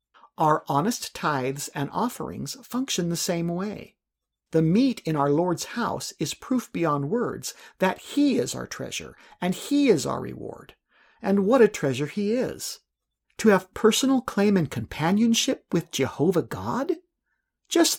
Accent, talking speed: American, 150 wpm